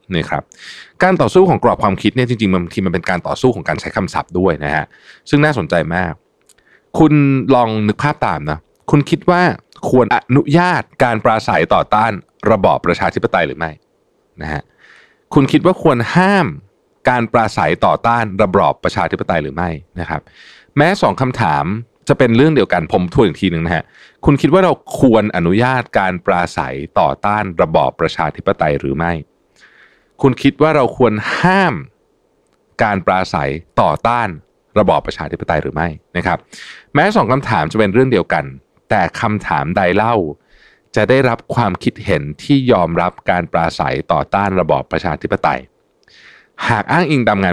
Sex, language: male, Thai